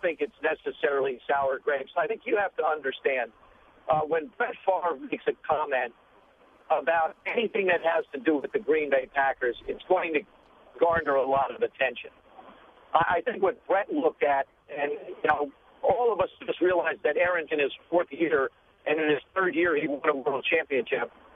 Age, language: 60-79, English